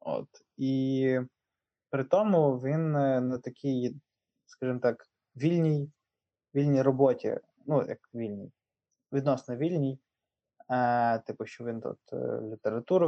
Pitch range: 125-150 Hz